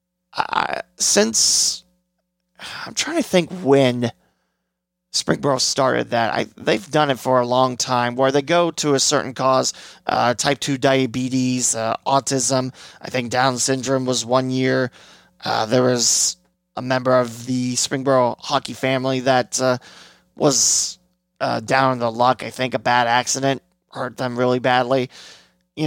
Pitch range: 125-170 Hz